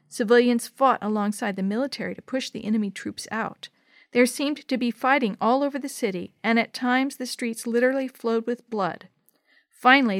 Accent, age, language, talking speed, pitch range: American, 50-69, English, 175 wpm, 195-245 Hz